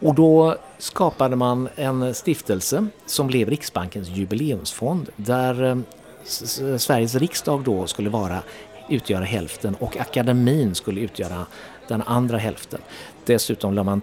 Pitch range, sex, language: 100-145 Hz, male, Swedish